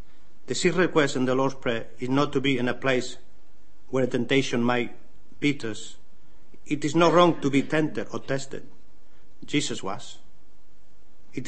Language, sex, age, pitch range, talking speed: English, male, 50-69, 115-145 Hz, 160 wpm